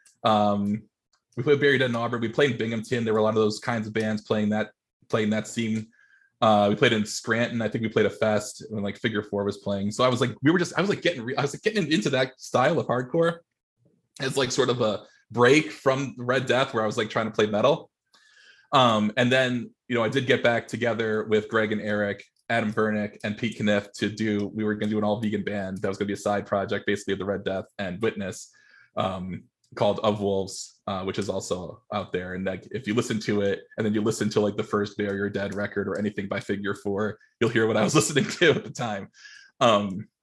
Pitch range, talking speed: 105-125 Hz, 245 wpm